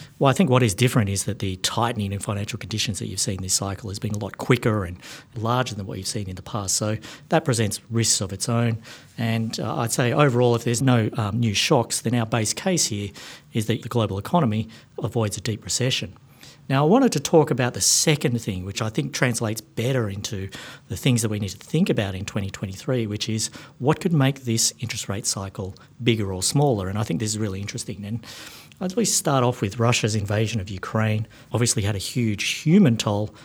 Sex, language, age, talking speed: male, English, 50-69, 225 wpm